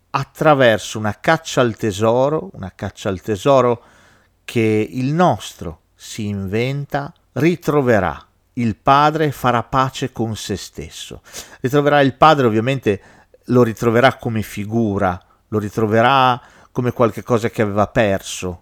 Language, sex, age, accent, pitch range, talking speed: Italian, male, 40-59, native, 105-140 Hz, 120 wpm